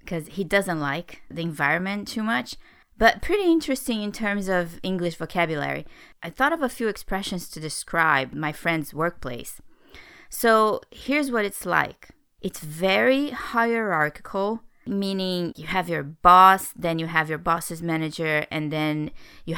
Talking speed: 145 wpm